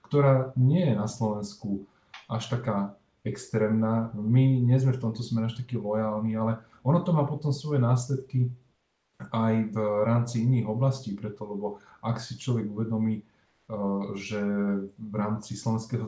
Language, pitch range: Slovak, 105-120 Hz